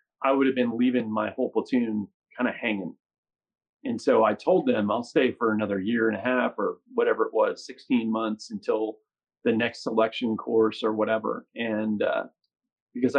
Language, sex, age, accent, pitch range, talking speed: English, male, 40-59, American, 110-155 Hz, 180 wpm